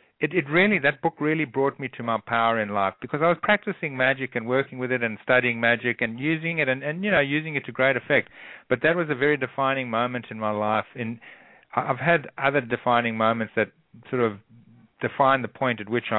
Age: 60-79